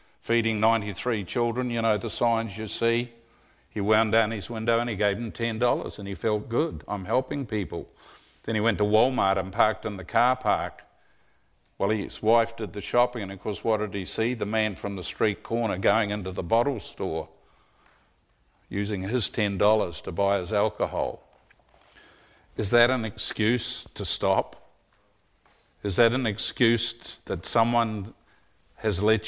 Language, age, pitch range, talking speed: English, 50-69, 105-120 Hz, 170 wpm